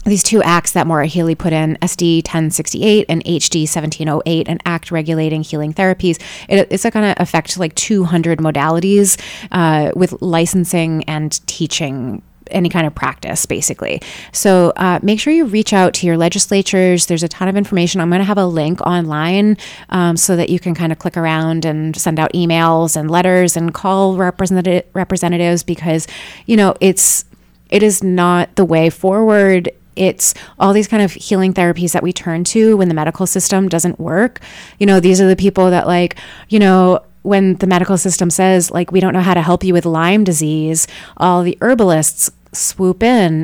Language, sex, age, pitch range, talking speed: English, female, 20-39, 165-190 Hz, 185 wpm